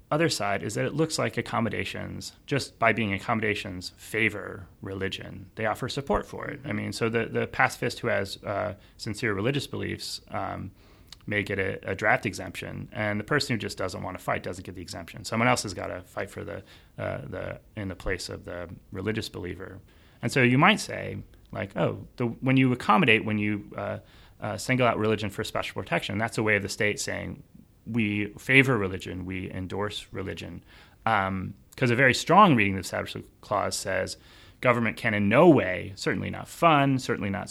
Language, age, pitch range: English, 30-49, 95-120 Hz